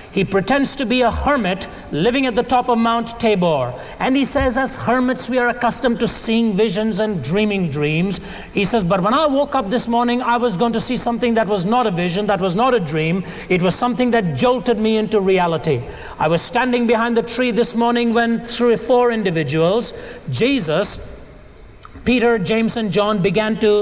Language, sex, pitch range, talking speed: English, male, 200-235 Hz, 200 wpm